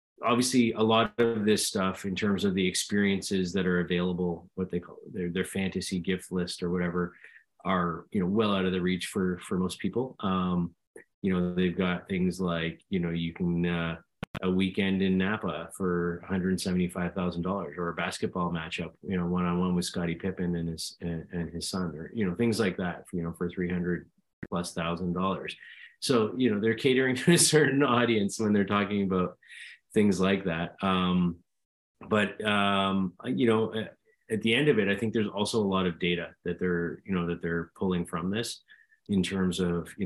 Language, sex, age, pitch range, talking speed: English, male, 30-49, 85-95 Hz, 195 wpm